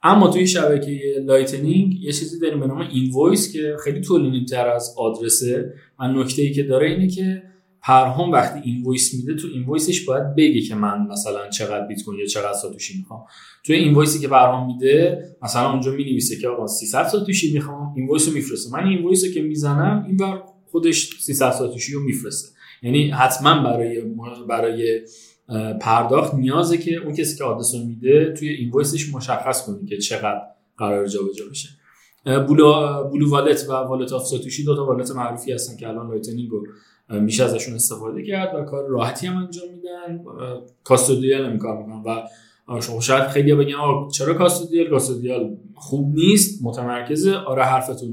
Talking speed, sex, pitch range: 165 wpm, male, 120-160 Hz